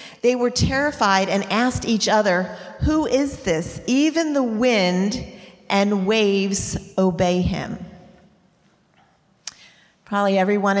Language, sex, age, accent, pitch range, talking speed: English, female, 40-59, American, 175-225 Hz, 105 wpm